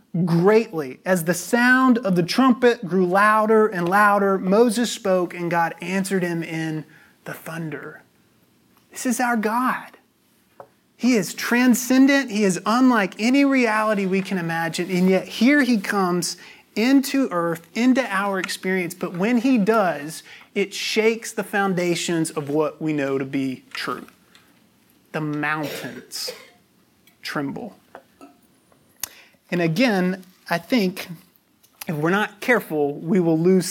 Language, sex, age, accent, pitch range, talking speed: English, male, 30-49, American, 160-215 Hz, 130 wpm